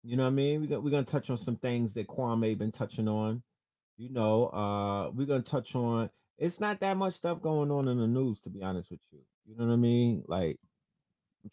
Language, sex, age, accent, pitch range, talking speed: English, male, 20-39, American, 105-140 Hz, 255 wpm